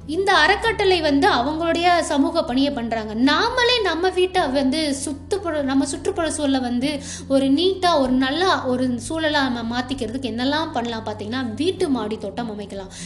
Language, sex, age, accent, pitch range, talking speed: Tamil, female, 20-39, native, 245-325 Hz, 140 wpm